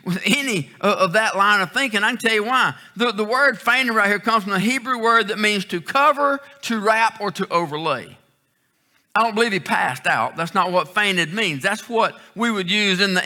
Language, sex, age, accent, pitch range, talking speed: English, male, 50-69, American, 185-240 Hz, 225 wpm